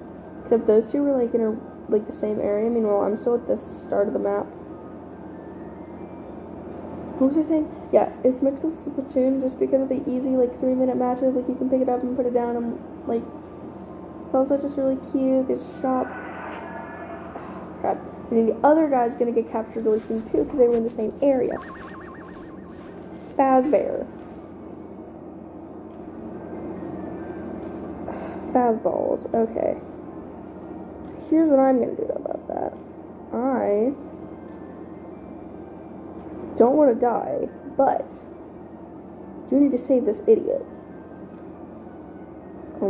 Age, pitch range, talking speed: 10-29, 215-290 Hz, 145 wpm